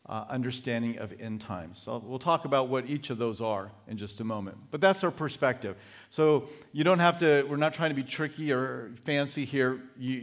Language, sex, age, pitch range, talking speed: English, male, 40-59, 125-150 Hz, 215 wpm